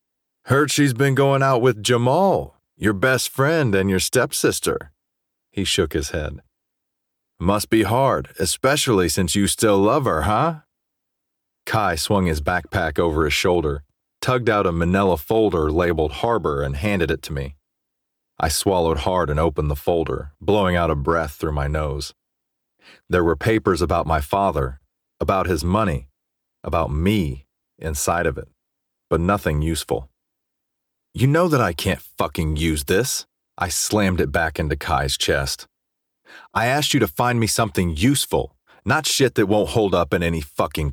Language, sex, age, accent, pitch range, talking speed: English, male, 40-59, American, 80-110 Hz, 160 wpm